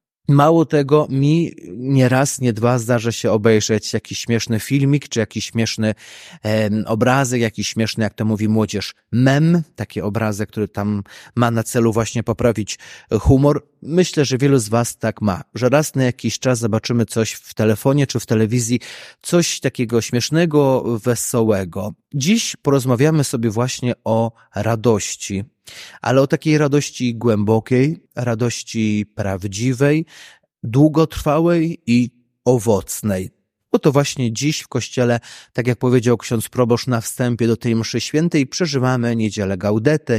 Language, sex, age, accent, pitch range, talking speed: Polish, male, 30-49, native, 110-140 Hz, 140 wpm